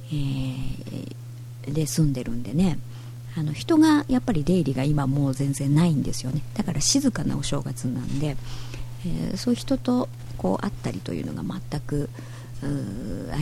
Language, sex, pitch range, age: Japanese, male, 120-160 Hz, 50-69